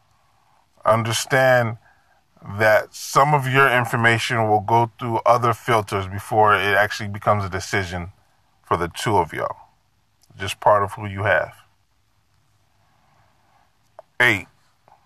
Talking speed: 115 wpm